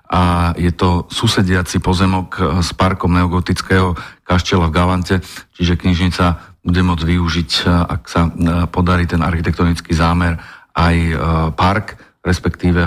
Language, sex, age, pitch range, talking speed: Slovak, male, 40-59, 85-95 Hz, 115 wpm